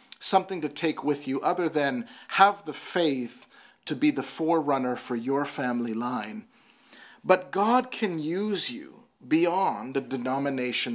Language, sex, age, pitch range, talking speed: English, male, 40-59, 145-210 Hz, 145 wpm